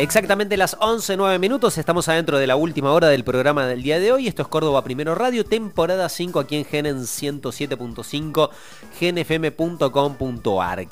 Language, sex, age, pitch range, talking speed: Spanish, male, 30-49, 140-175 Hz, 155 wpm